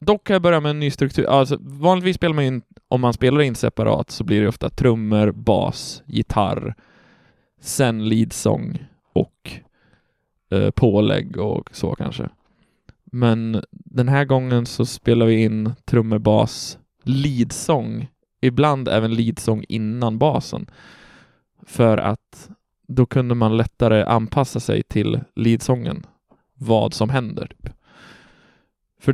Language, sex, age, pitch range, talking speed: Swedish, male, 20-39, 110-135 Hz, 130 wpm